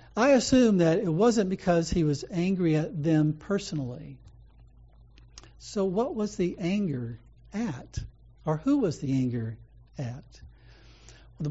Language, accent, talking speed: English, American, 130 wpm